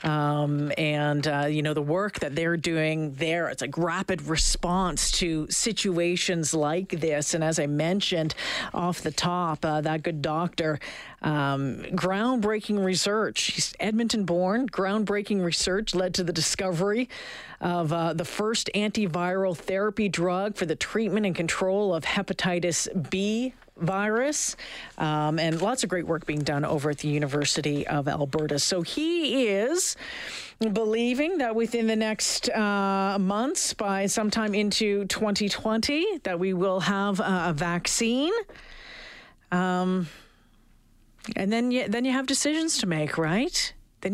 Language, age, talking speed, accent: English, 40-59, 140 wpm, American